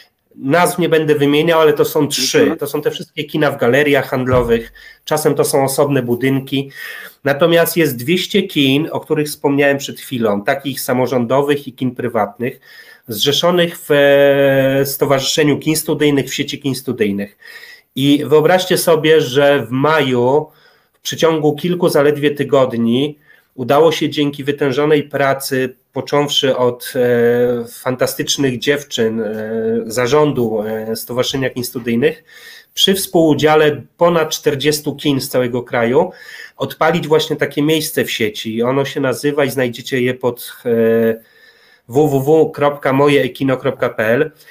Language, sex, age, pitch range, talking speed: Polish, male, 30-49, 130-155 Hz, 125 wpm